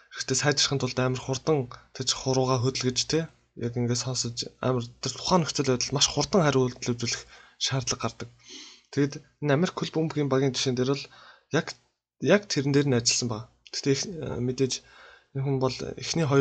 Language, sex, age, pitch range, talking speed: Russian, male, 20-39, 125-145 Hz, 60 wpm